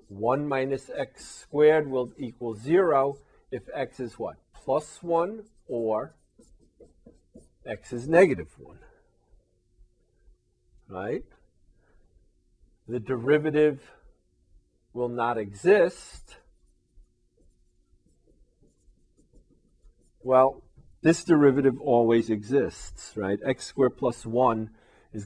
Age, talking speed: 50-69, 85 wpm